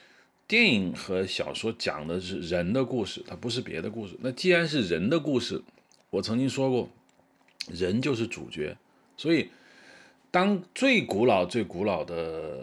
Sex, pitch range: male, 95-145 Hz